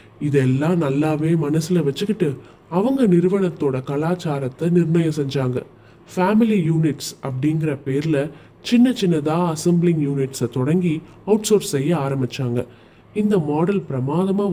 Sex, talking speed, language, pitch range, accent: male, 100 wpm, Tamil, 135-170 Hz, native